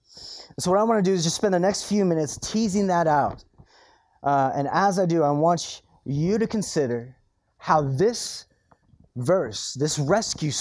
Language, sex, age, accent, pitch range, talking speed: English, male, 30-49, American, 140-190 Hz, 175 wpm